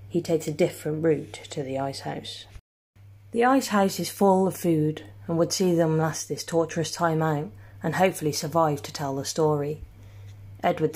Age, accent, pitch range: 30-49, British, 110-160 Hz